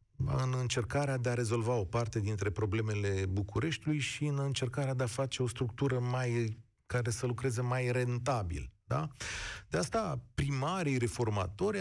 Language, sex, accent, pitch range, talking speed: Romanian, male, native, 110-160 Hz, 145 wpm